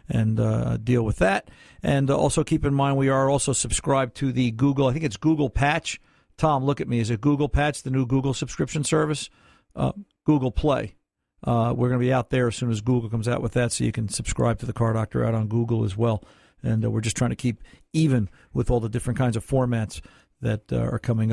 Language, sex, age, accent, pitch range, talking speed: English, male, 50-69, American, 115-140 Hz, 240 wpm